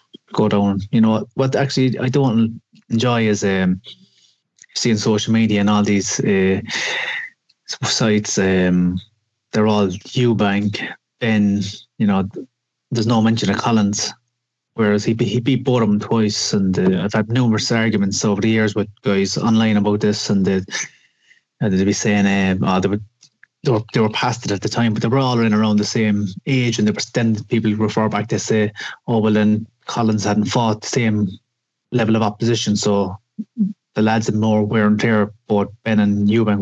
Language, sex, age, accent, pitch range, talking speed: English, male, 30-49, Irish, 100-115 Hz, 180 wpm